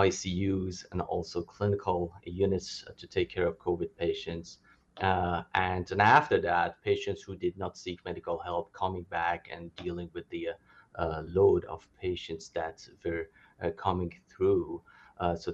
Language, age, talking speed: English, 30-49, 160 wpm